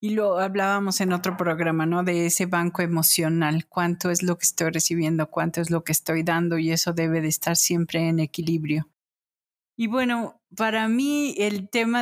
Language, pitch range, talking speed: Spanish, 175-200 Hz, 185 wpm